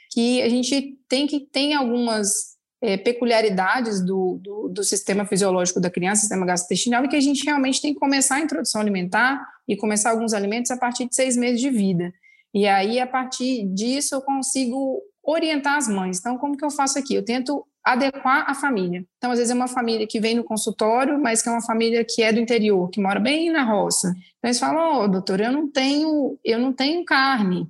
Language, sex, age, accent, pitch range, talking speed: Portuguese, female, 20-39, Brazilian, 205-260 Hz, 205 wpm